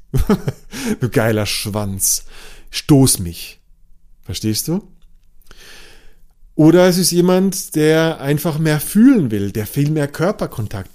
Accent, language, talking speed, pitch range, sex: German, German, 110 wpm, 120-170 Hz, male